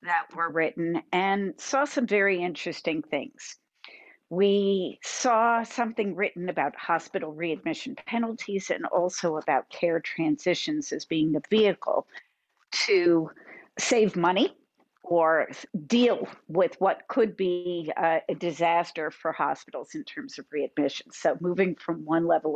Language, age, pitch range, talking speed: English, 50-69, 170-225 Hz, 130 wpm